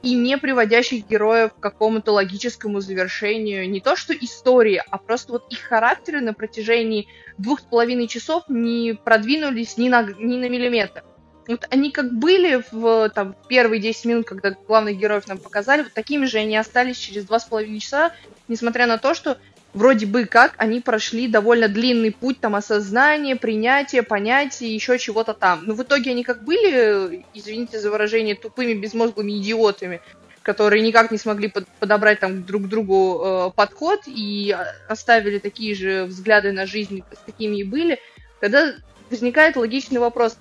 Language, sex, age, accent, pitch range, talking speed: Russian, female, 20-39, native, 210-250 Hz, 165 wpm